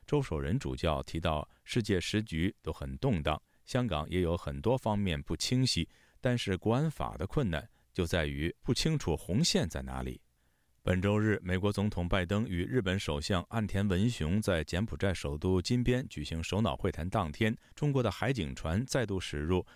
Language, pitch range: Chinese, 75-110 Hz